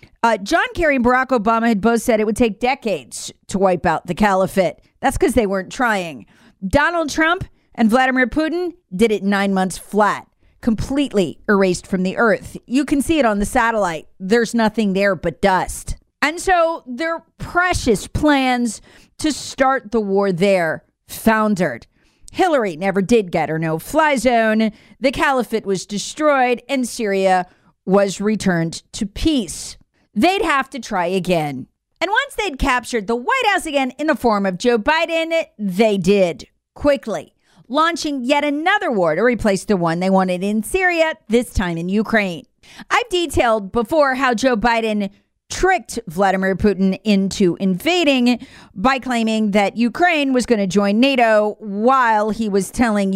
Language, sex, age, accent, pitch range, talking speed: English, female, 40-59, American, 195-275 Hz, 160 wpm